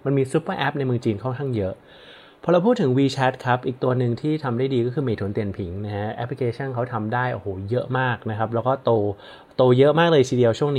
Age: 20-39